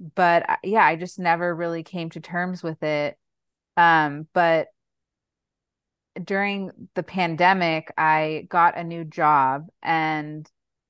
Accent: American